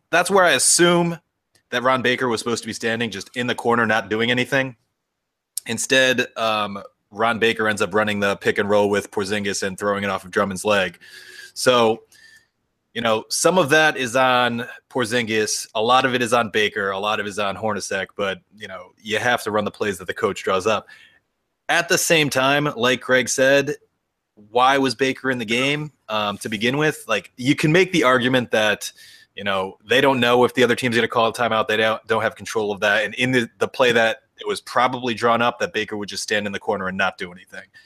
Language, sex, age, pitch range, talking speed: English, male, 20-39, 105-130 Hz, 225 wpm